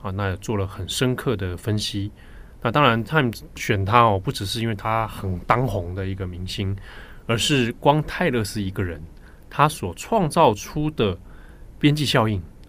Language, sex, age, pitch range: Chinese, male, 20-39, 95-130 Hz